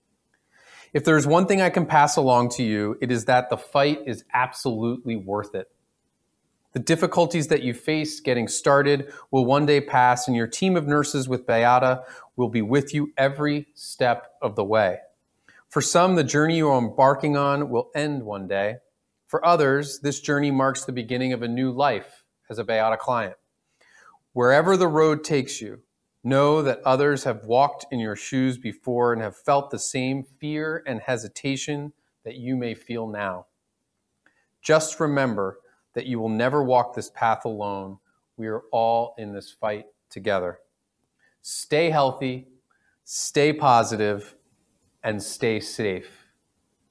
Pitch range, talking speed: 115-145 Hz, 160 wpm